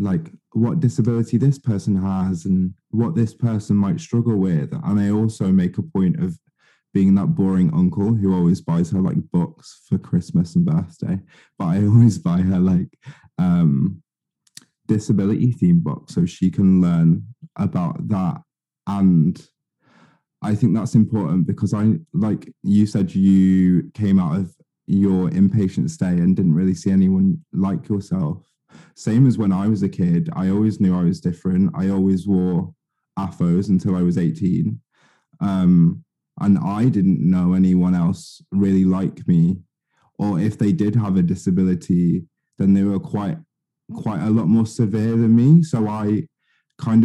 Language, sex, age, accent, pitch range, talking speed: English, male, 20-39, British, 95-135 Hz, 160 wpm